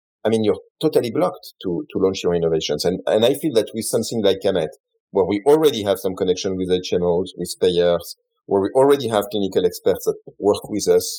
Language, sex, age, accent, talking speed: English, male, 40-59, French, 210 wpm